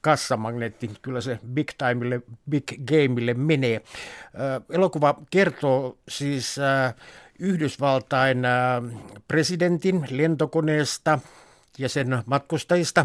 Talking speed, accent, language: 80 wpm, native, Finnish